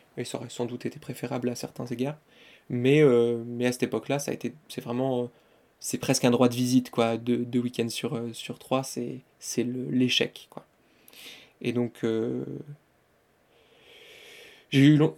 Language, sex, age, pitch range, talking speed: French, male, 20-39, 120-135 Hz, 185 wpm